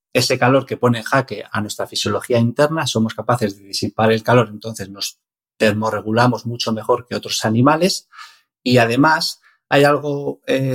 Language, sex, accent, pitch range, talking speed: Spanish, male, Spanish, 110-130 Hz, 160 wpm